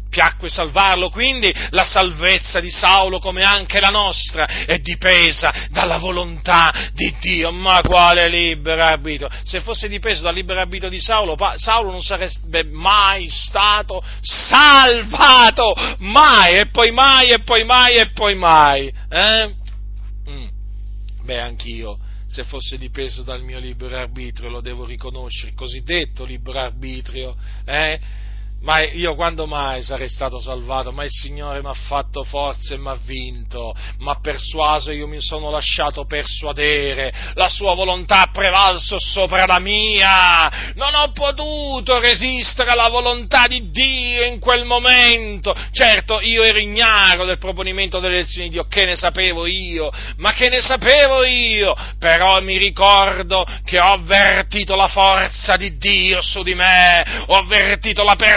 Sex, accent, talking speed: male, native, 150 wpm